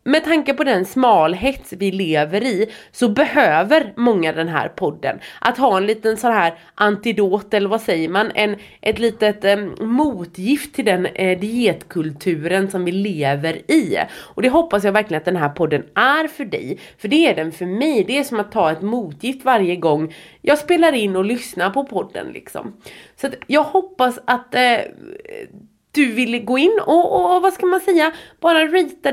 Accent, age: Swedish, 30-49